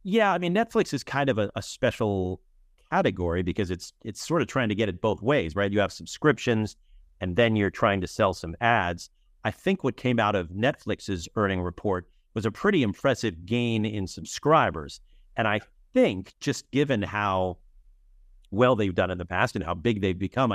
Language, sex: English, male